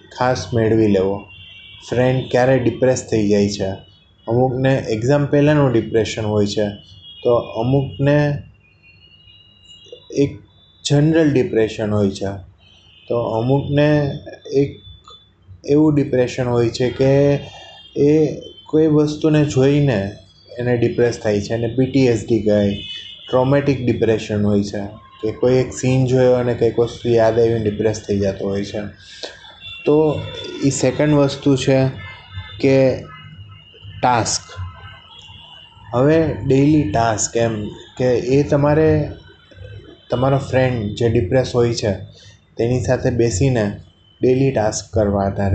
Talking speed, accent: 100 wpm, native